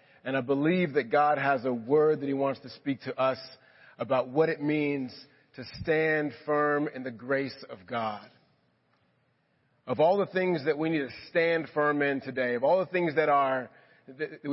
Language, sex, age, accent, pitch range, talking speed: English, male, 40-59, American, 125-150 Hz, 190 wpm